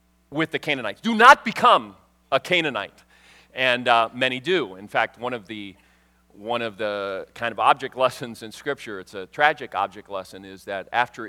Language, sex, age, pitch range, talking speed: English, male, 40-59, 95-135 Hz, 180 wpm